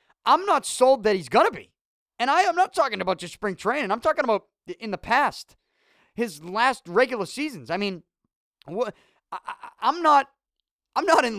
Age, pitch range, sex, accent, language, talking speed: 30-49, 180-255 Hz, male, American, English, 175 wpm